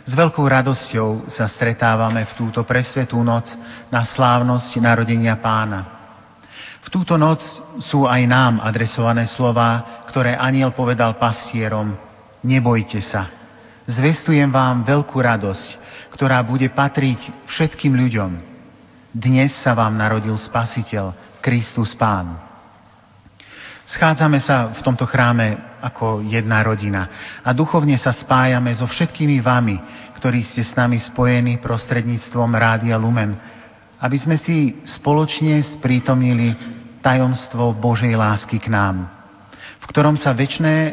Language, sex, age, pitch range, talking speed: Slovak, male, 40-59, 110-130 Hz, 115 wpm